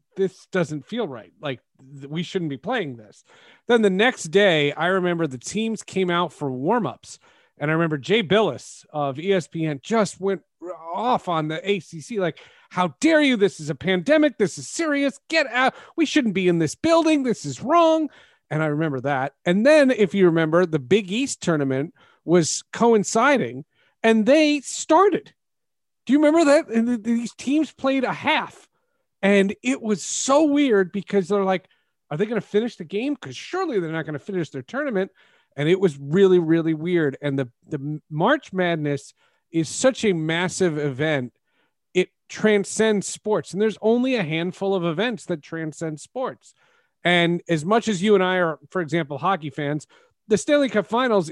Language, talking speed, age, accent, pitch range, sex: English, 180 wpm, 40-59, American, 160-230 Hz, male